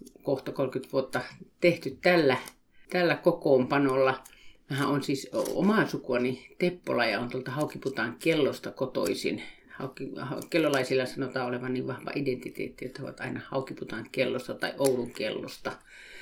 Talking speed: 130 wpm